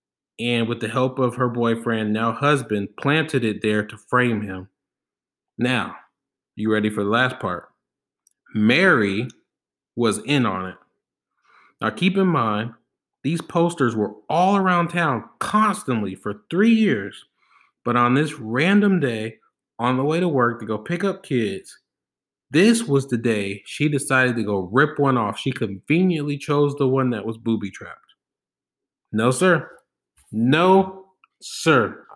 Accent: American